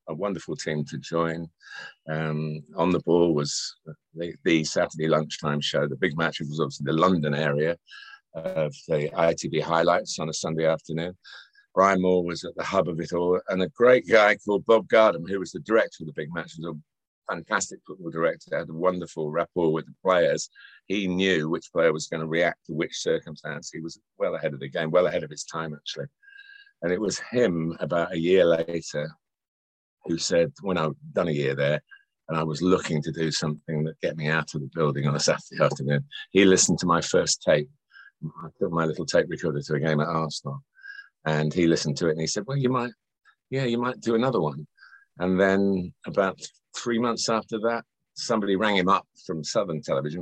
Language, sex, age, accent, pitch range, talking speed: English, male, 50-69, British, 80-100 Hz, 205 wpm